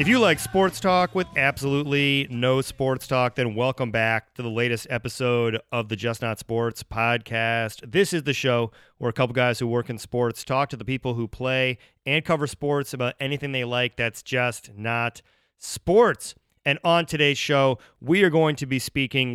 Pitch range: 120-140 Hz